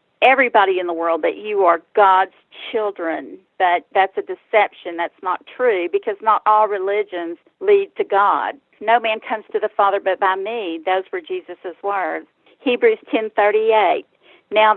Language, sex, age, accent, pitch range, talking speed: English, female, 50-69, American, 190-265 Hz, 165 wpm